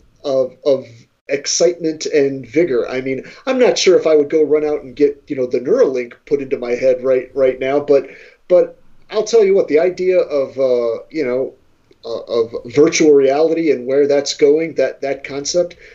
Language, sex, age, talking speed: English, male, 40-59, 195 wpm